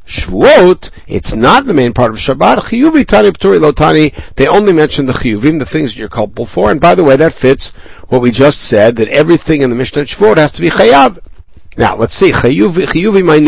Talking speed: 205 wpm